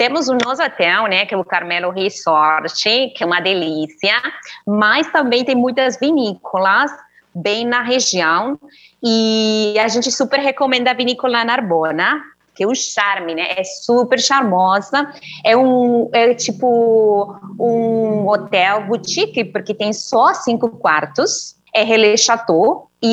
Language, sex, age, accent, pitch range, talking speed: Portuguese, female, 20-39, Brazilian, 185-250 Hz, 140 wpm